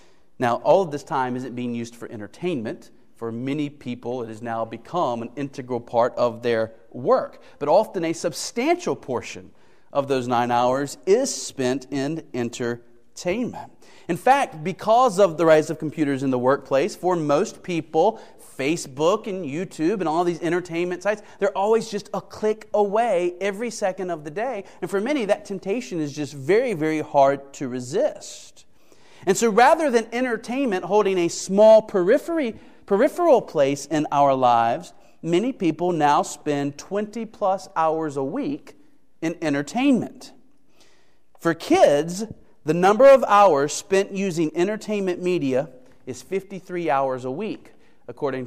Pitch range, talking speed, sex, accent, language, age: 130-200 Hz, 150 wpm, male, American, English, 40-59